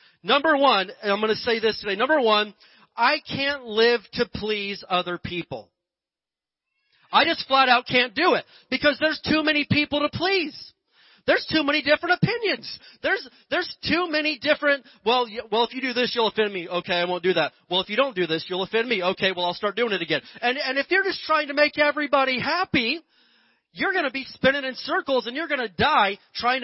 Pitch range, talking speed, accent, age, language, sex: 215-280 Hz, 205 wpm, American, 40-59, English, male